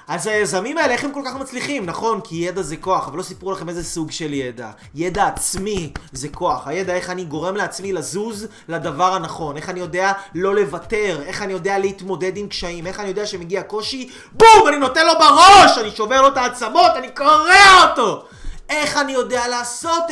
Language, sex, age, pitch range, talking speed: Hebrew, male, 30-49, 185-270 Hz, 195 wpm